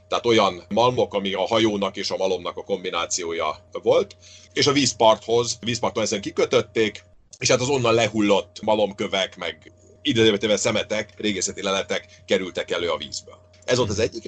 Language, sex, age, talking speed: Hungarian, male, 40-59, 145 wpm